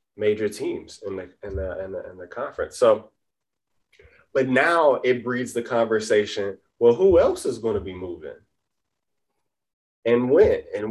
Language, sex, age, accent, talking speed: English, male, 20-39, American, 155 wpm